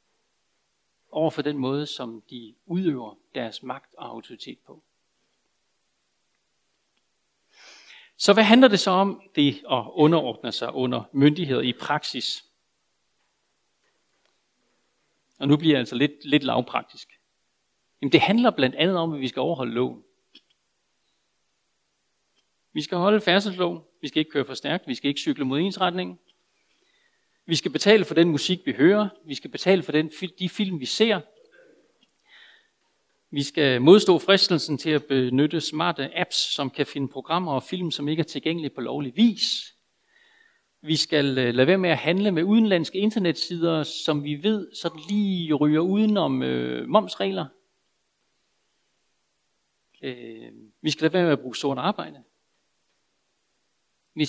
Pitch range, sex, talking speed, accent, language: 140-190 Hz, male, 140 wpm, native, Danish